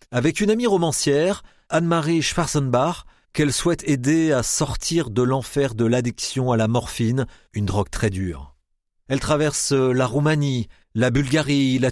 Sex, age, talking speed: male, 40-59, 145 wpm